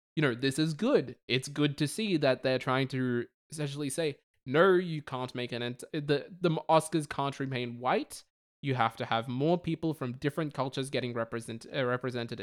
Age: 20-39